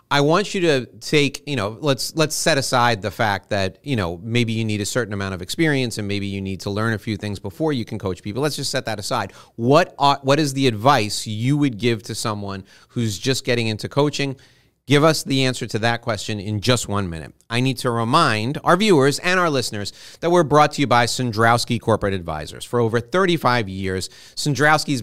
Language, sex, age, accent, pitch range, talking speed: English, male, 40-59, American, 110-140 Hz, 225 wpm